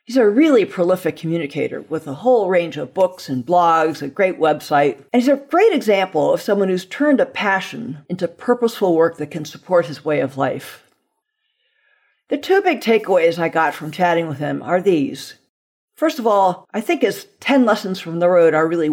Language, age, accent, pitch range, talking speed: English, 50-69, American, 160-260 Hz, 195 wpm